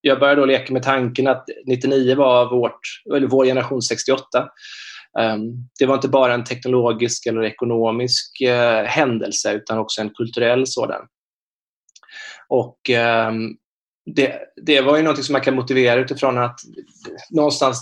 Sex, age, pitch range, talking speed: male, 20-39, 115-135 Hz, 130 wpm